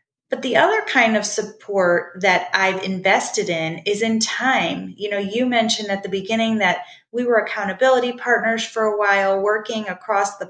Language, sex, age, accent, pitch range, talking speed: English, female, 30-49, American, 195-235 Hz, 175 wpm